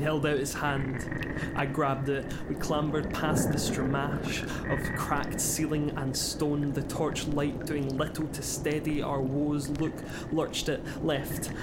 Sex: male